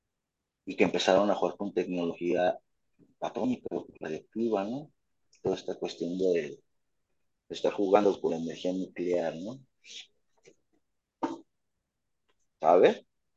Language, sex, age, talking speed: Spanish, male, 30-49, 95 wpm